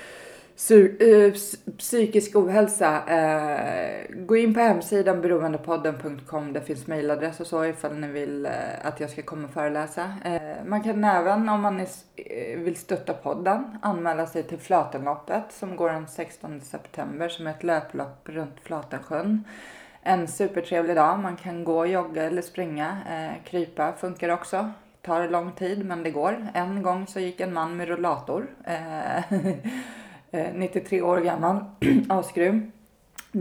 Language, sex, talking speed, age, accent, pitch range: Swedish, female, 135 wpm, 20-39, native, 160-205 Hz